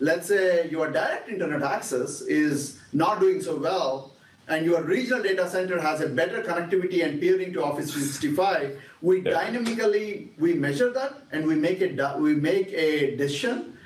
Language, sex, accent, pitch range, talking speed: English, male, Indian, 155-210 Hz, 150 wpm